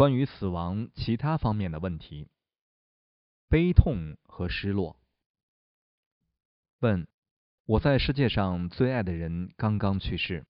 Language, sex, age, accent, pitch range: Chinese, male, 20-39, native, 90-115 Hz